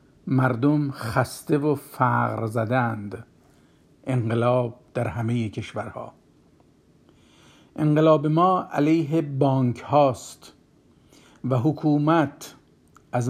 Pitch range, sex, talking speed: 120-155 Hz, male, 75 wpm